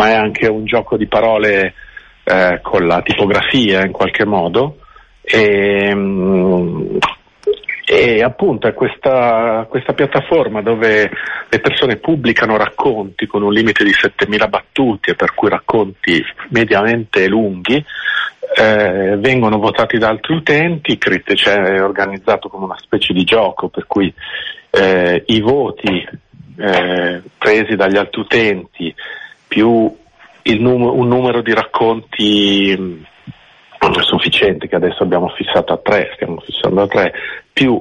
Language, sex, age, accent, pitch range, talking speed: Italian, male, 50-69, native, 95-120 Hz, 130 wpm